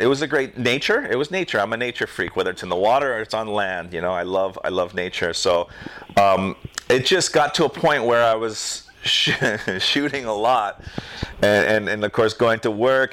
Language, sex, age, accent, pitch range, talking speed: English, male, 40-59, American, 95-110 Hz, 230 wpm